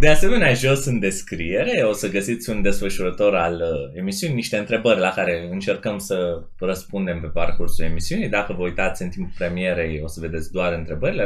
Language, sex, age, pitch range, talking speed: Romanian, male, 20-39, 80-120 Hz, 180 wpm